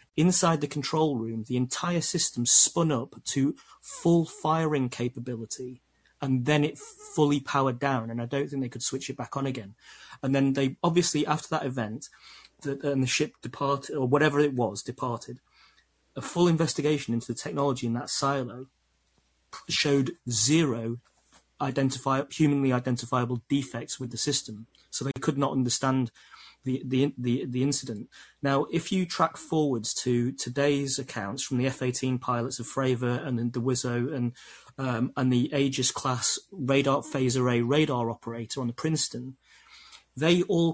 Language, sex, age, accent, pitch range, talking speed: English, male, 30-49, British, 125-145 Hz, 155 wpm